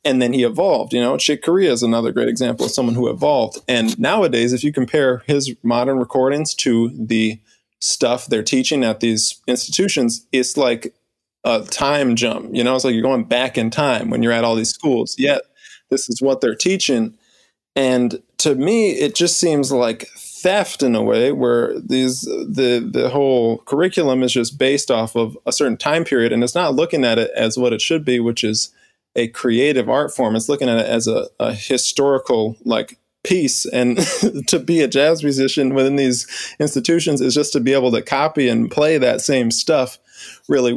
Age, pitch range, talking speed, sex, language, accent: 20-39, 120-145 Hz, 195 wpm, male, English, American